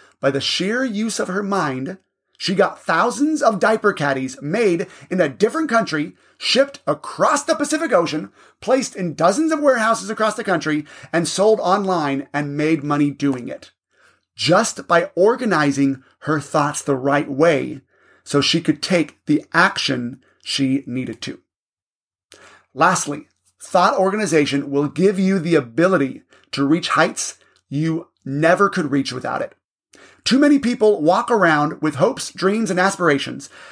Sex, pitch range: male, 145-215 Hz